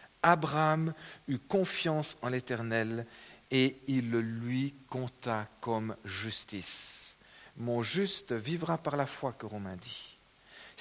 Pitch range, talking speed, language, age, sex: 115-160 Hz, 140 wpm, French, 50-69, male